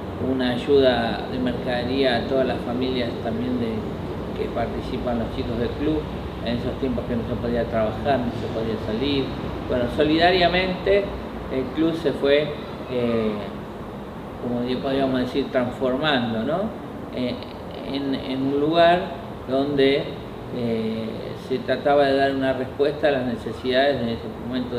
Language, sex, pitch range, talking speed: Spanish, male, 120-145 Hz, 145 wpm